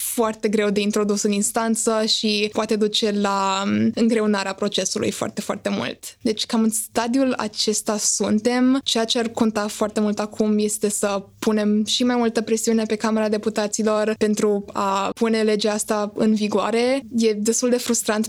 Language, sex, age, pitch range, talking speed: Romanian, female, 20-39, 210-225 Hz, 160 wpm